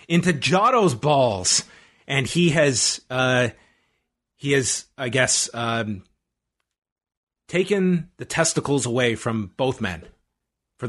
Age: 30-49